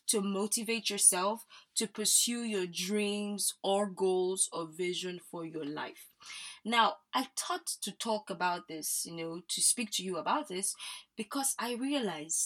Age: 20-39